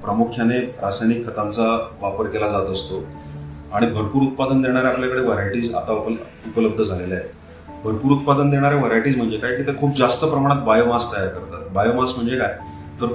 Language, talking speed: Hindi, 100 wpm